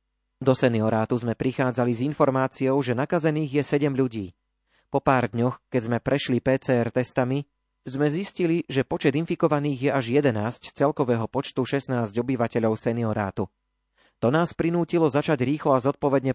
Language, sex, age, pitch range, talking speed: Slovak, male, 30-49, 115-145 Hz, 145 wpm